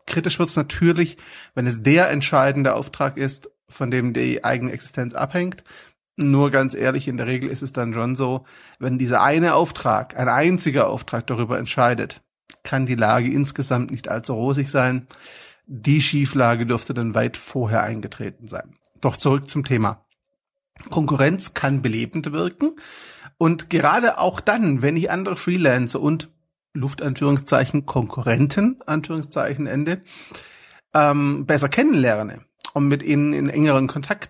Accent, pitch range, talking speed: German, 130-165 Hz, 145 wpm